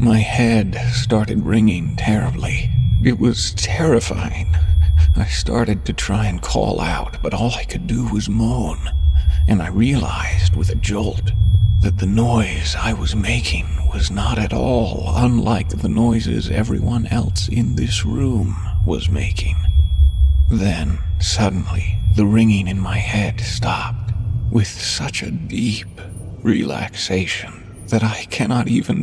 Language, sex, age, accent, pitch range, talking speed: English, male, 50-69, American, 95-115 Hz, 135 wpm